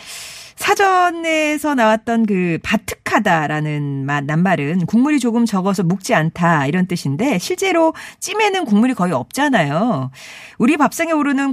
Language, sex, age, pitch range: Korean, female, 40-59, 170-275 Hz